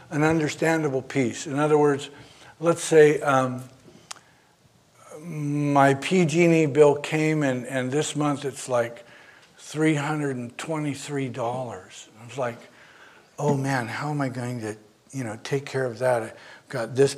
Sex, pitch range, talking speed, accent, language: male, 125-155 Hz, 135 wpm, American, English